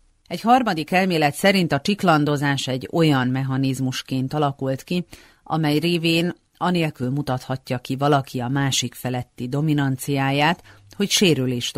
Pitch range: 125-155 Hz